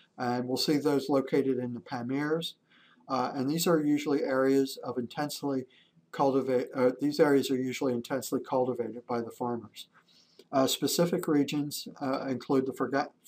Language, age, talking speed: English, 50-69, 155 wpm